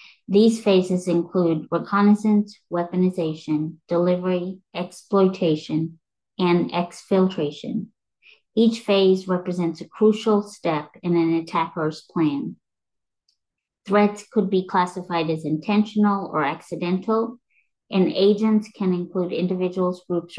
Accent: American